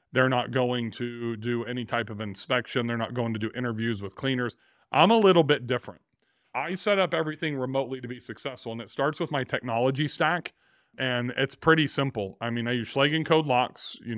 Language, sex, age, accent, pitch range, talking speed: English, male, 40-59, American, 120-145 Hz, 205 wpm